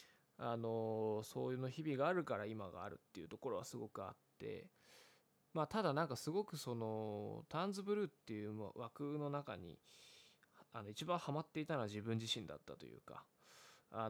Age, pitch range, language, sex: 20-39, 110-150 Hz, Japanese, male